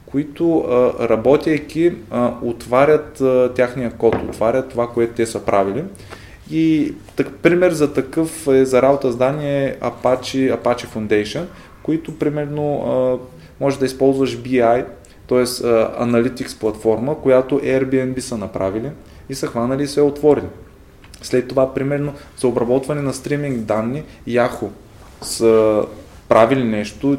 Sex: male